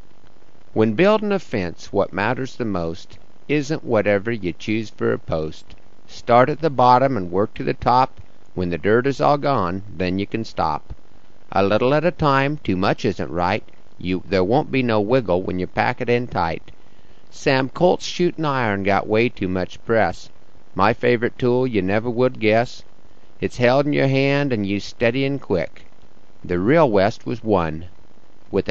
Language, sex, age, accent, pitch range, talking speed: English, male, 50-69, American, 95-125 Hz, 180 wpm